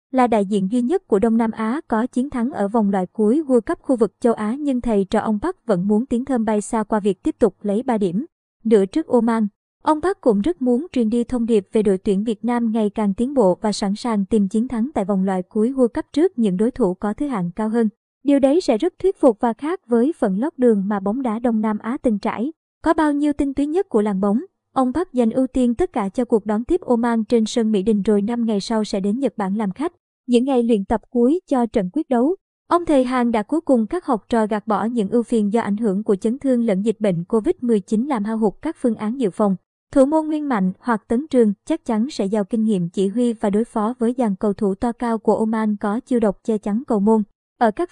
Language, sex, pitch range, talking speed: Vietnamese, male, 215-260 Hz, 265 wpm